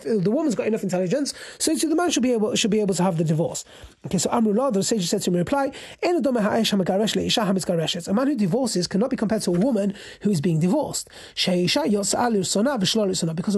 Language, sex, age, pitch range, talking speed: English, male, 30-49, 185-230 Hz, 190 wpm